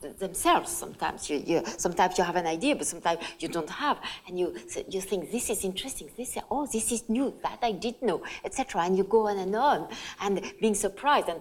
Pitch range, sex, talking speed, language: 190-270 Hz, female, 220 wpm, English